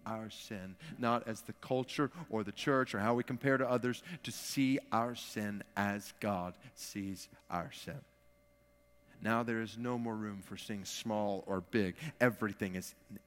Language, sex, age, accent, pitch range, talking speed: English, male, 30-49, American, 100-155 Hz, 170 wpm